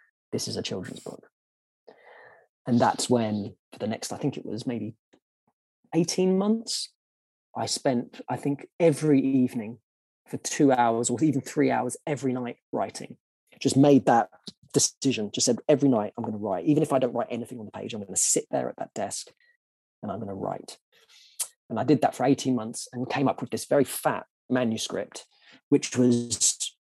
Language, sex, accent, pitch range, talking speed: English, male, British, 115-140 Hz, 190 wpm